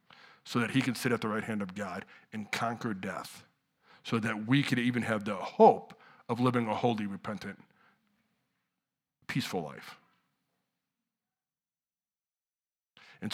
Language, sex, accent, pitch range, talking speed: English, male, American, 120-155 Hz, 135 wpm